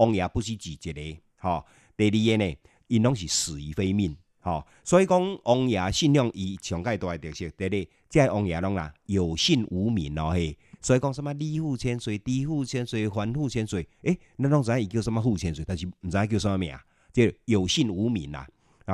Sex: male